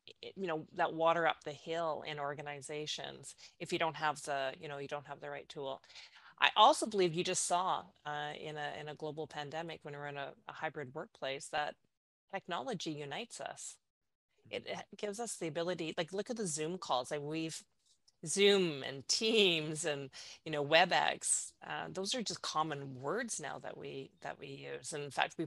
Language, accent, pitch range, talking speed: English, American, 145-185 Hz, 200 wpm